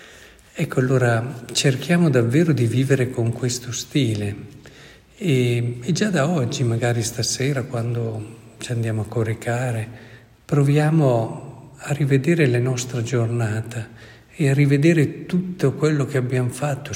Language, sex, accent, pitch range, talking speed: Italian, male, native, 115-145 Hz, 125 wpm